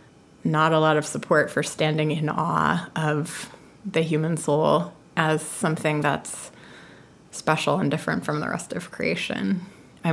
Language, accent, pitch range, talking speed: English, American, 145-160 Hz, 150 wpm